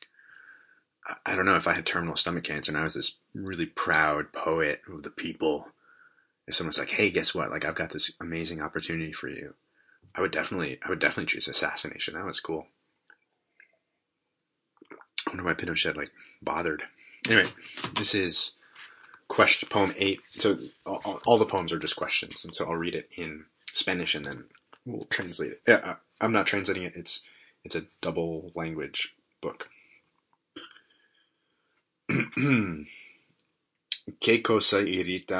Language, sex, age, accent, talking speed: English, male, 30-49, American, 155 wpm